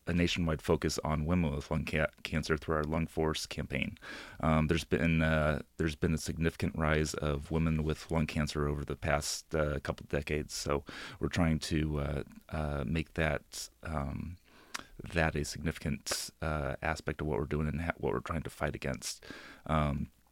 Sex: male